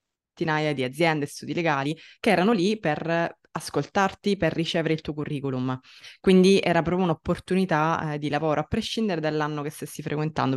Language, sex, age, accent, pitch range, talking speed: Italian, female, 20-39, native, 155-190 Hz, 160 wpm